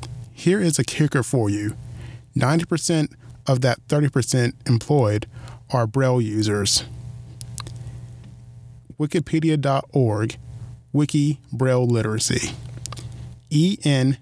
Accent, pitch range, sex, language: American, 120-135 Hz, male, English